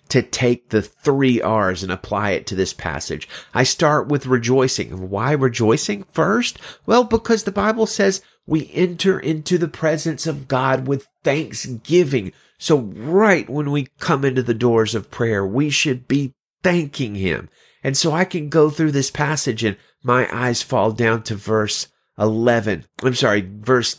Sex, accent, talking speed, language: male, American, 165 wpm, English